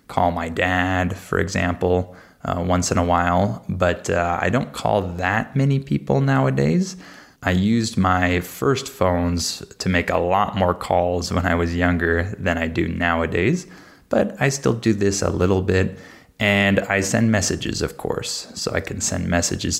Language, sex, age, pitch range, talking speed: Spanish, male, 20-39, 85-100 Hz, 175 wpm